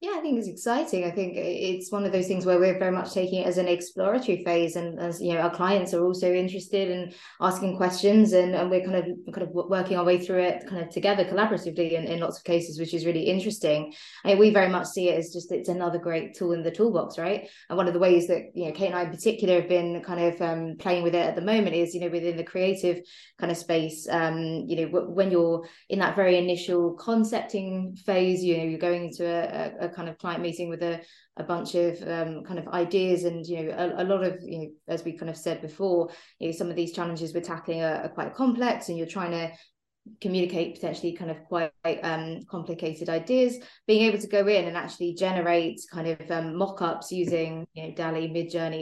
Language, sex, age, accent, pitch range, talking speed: English, female, 20-39, British, 170-190 Hz, 240 wpm